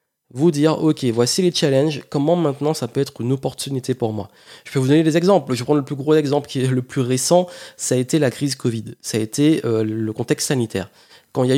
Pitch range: 125-160 Hz